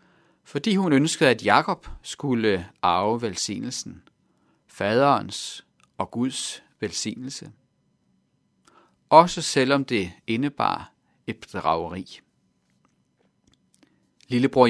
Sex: male